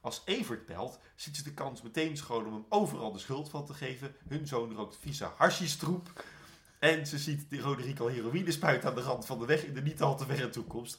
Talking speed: 235 wpm